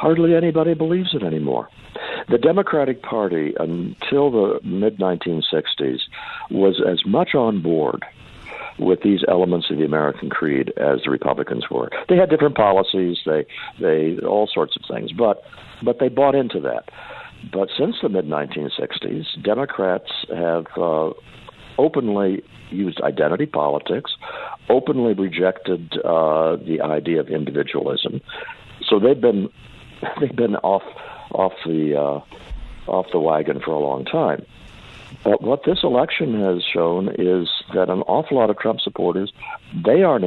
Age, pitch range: 60-79, 85-140 Hz